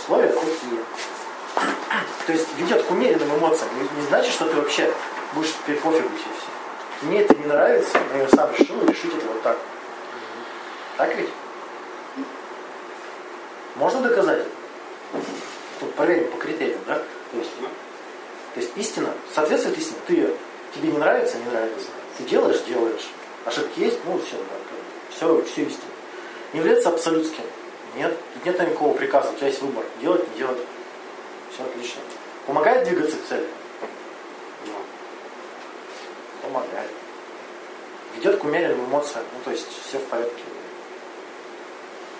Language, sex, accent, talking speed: Russian, male, native, 130 wpm